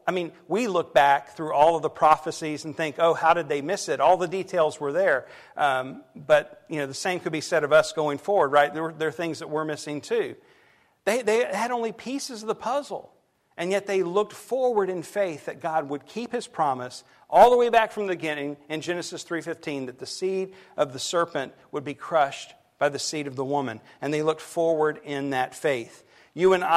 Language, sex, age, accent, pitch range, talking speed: English, male, 50-69, American, 145-175 Hz, 225 wpm